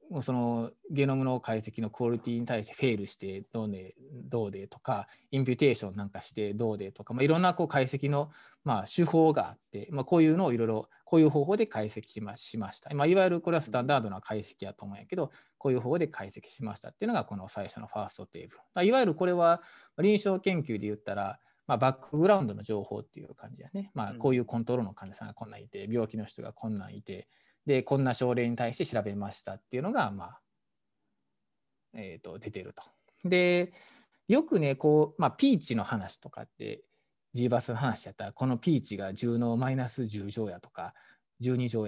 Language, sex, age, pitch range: Japanese, male, 20-39, 105-155 Hz